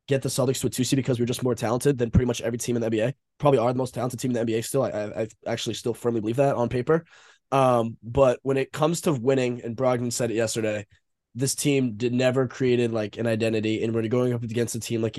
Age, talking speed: 20-39, 260 wpm